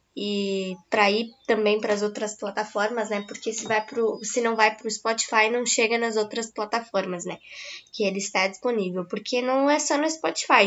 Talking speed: 190 wpm